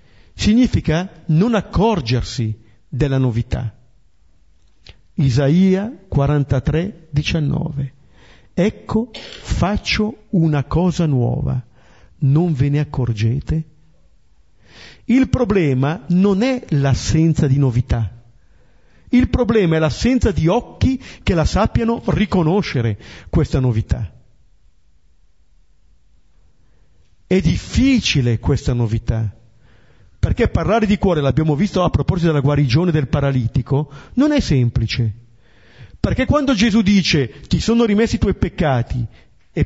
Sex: male